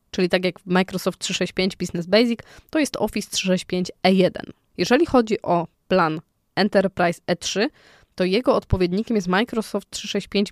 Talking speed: 145 wpm